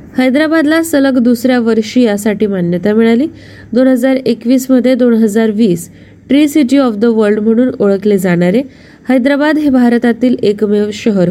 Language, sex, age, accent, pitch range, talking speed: Marathi, female, 20-39, native, 210-265 Hz, 145 wpm